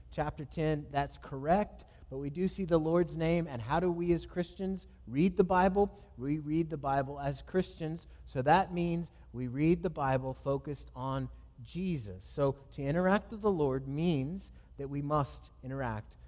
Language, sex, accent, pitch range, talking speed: English, male, American, 110-165 Hz, 175 wpm